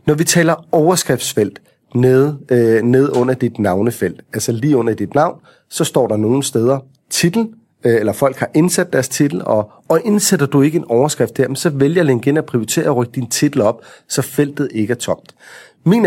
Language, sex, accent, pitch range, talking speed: Danish, male, native, 120-155 Hz, 200 wpm